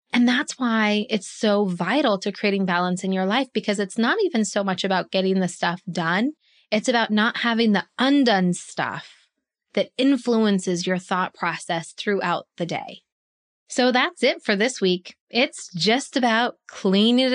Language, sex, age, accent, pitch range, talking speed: English, female, 20-39, American, 185-235 Hz, 165 wpm